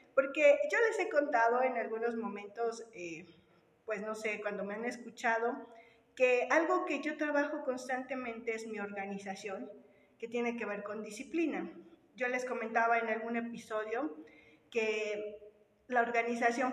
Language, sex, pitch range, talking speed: Spanish, female, 215-270 Hz, 145 wpm